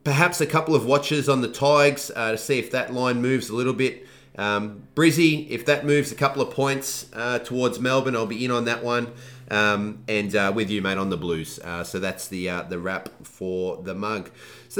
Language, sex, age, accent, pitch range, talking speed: English, male, 30-49, Australian, 110-145 Hz, 225 wpm